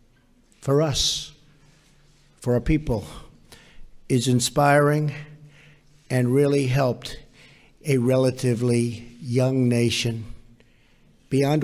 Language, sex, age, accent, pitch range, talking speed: English, male, 50-69, American, 120-165 Hz, 75 wpm